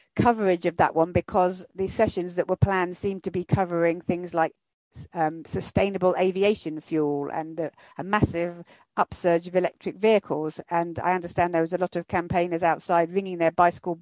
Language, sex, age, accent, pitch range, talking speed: English, female, 50-69, British, 160-185 Hz, 175 wpm